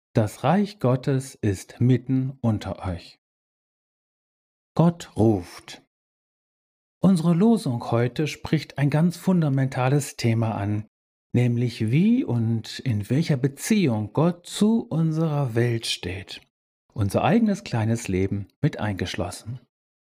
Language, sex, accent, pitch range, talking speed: German, male, German, 110-165 Hz, 105 wpm